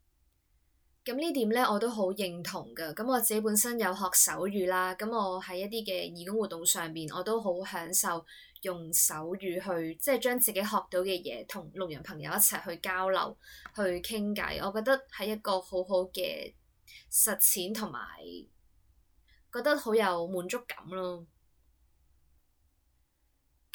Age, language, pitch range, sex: 20-39, Chinese, 160-195 Hz, female